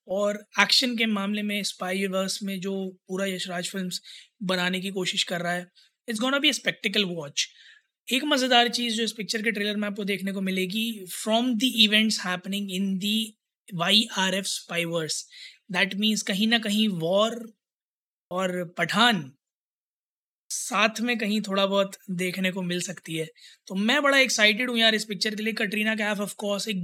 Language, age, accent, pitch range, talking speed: Hindi, 20-39, native, 190-220 Hz, 175 wpm